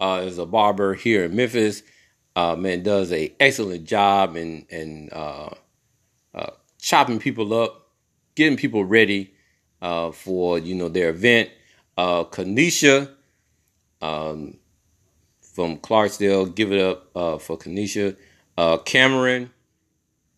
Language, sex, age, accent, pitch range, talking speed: English, male, 40-59, American, 90-110 Hz, 125 wpm